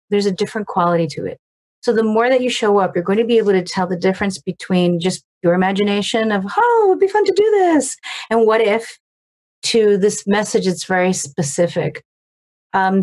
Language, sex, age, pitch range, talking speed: English, female, 40-59, 180-215 Hz, 205 wpm